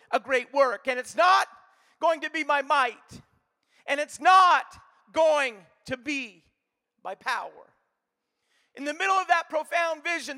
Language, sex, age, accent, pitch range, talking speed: English, male, 50-69, American, 280-360 Hz, 150 wpm